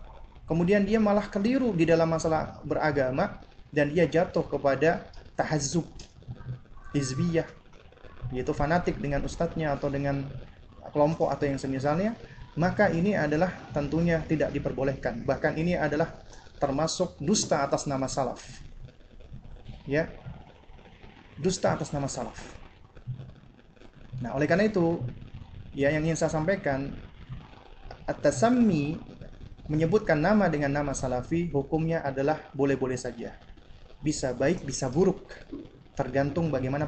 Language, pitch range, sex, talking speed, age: Indonesian, 135-185 Hz, male, 110 wpm, 30-49